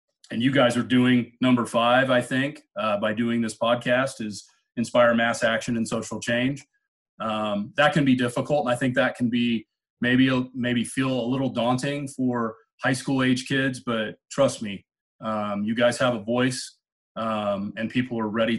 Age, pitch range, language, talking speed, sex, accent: 30-49, 105-125 Hz, English, 185 wpm, male, American